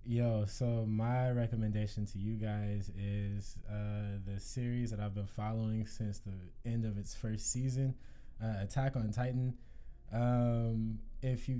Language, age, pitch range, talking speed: English, 20-39, 105-120 Hz, 150 wpm